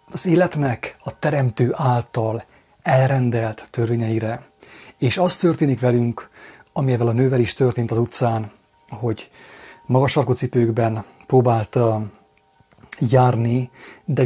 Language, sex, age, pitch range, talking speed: English, male, 30-49, 115-135 Hz, 100 wpm